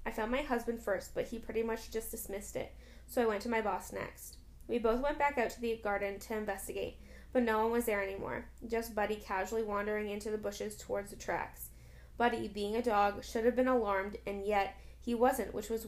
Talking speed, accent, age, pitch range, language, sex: 225 wpm, American, 10-29, 200-235 Hz, English, female